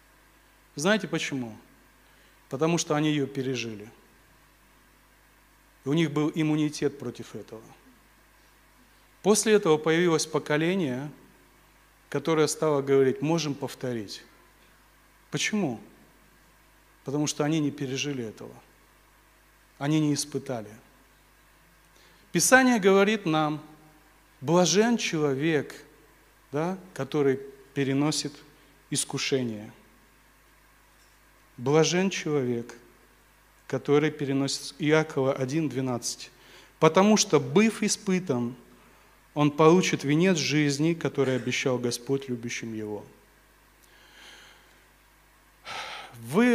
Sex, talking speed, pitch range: male, 75 wpm, 135-160 Hz